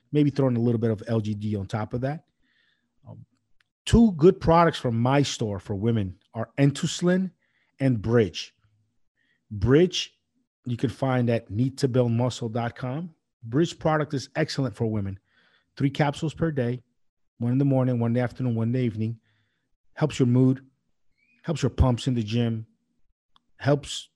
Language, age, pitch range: English, 40-59, 115-140 Hz